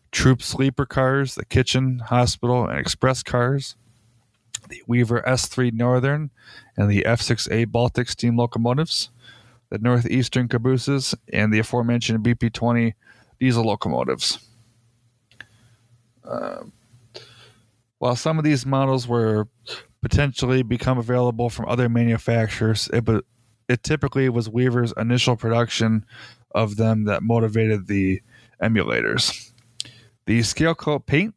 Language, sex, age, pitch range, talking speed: English, male, 20-39, 115-125 Hz, 110 wpm